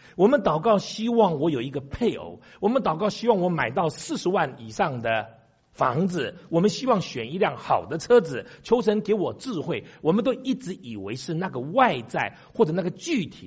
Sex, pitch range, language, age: male, 140-215 Hz, Chinese, 50-69